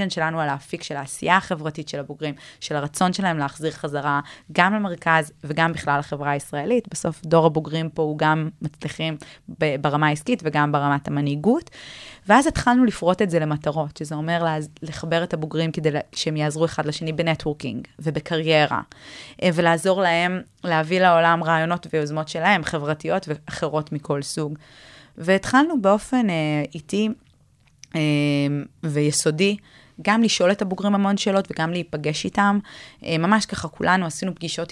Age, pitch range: 20-39, 150-170 Hz